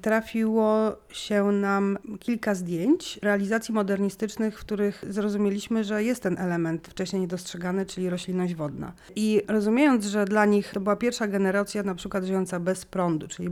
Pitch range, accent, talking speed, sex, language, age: 190-220 Hz, native, 150 wpm, female, Polish, 30-49